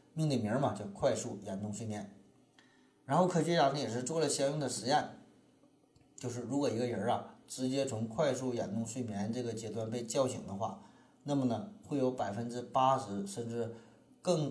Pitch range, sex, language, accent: 110-135 Hz, male, Chinese, native